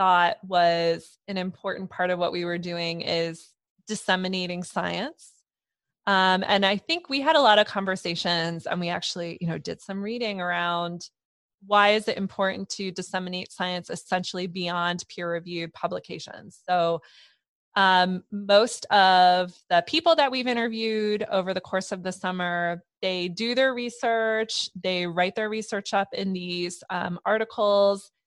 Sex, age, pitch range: female, 20-39, 175-205 Hz